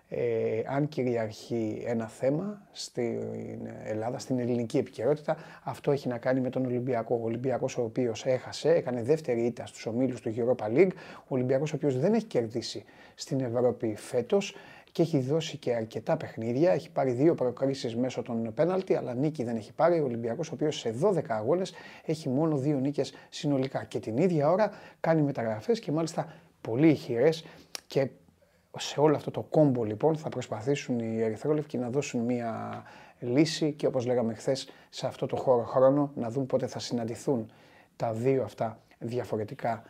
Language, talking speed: Greek, 170 wpm